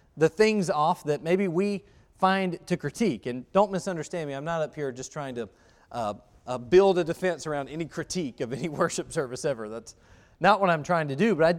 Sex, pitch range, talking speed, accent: male, 135-180 Hz, 215 wpm, American